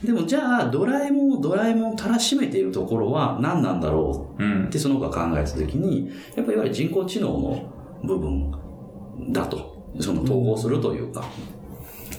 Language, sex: Japanese, male